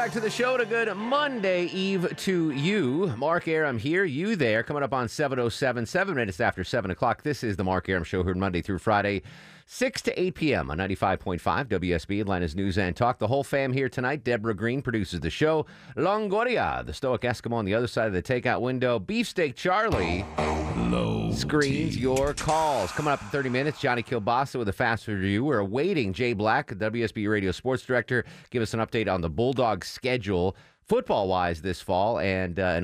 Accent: American